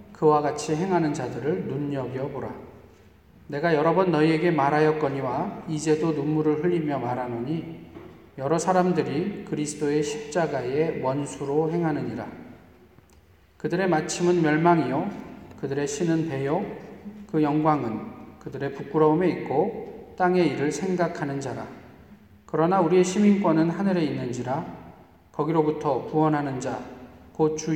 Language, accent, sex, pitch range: Korean, native, male, 130-170 Hz